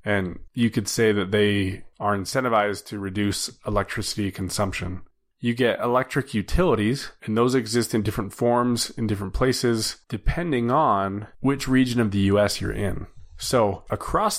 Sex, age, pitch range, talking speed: male, 20-39, 95-115 Hz, 150 wpm